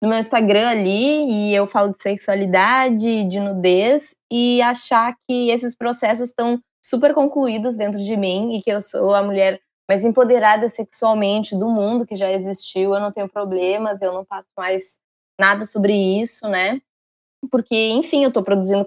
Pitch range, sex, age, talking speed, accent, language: 195-240 Hz, female, 20-39, 170 wpm, Brazilian, Portuguese